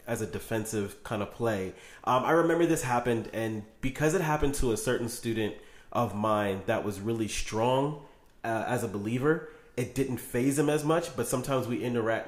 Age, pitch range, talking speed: 30-49, 110-140 Hz, 190 wpm